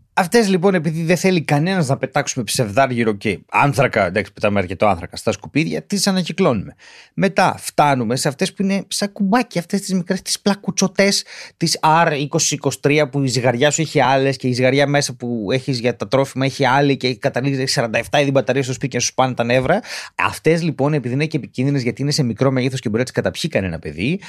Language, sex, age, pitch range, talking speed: Greek, male, 30-49, 120-175 Hz, 195 wpm